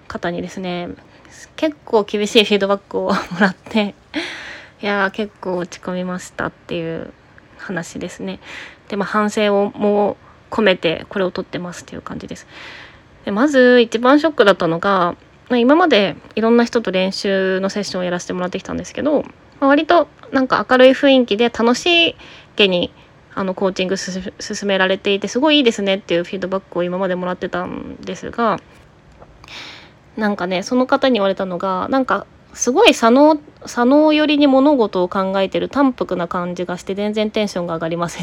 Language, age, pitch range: Japanese, 20-39, 185-260 Hz